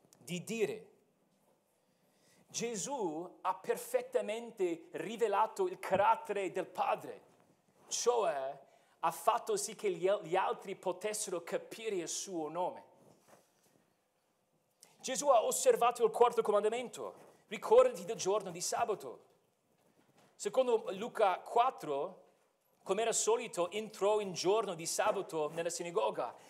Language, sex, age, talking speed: Italian, male, 40-59, 105 wpm